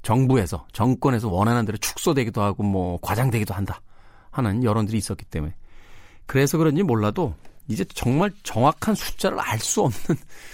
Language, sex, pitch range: Korean, male, 100-155 Hz